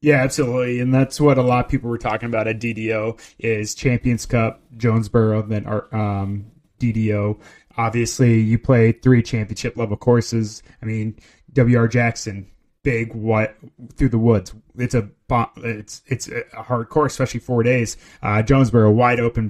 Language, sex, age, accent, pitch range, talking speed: English, male, 20-39, American, 110-125 Hz, 165 wpm